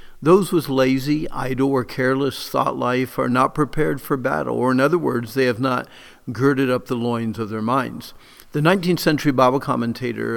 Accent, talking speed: American, 185 wpm